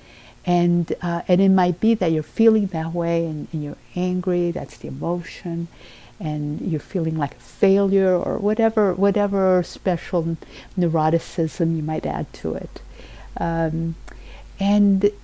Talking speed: 140 wpm